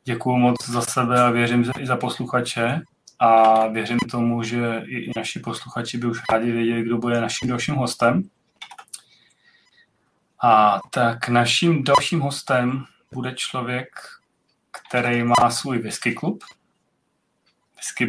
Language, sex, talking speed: Czech, male, 125 wpm